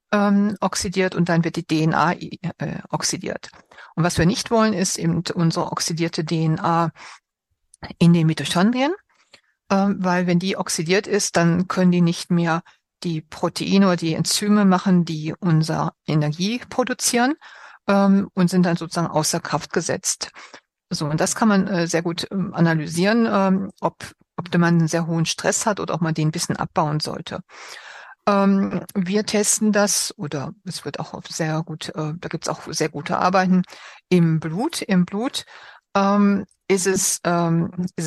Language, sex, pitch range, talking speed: German, female, 165-200 Hz, 155 wpm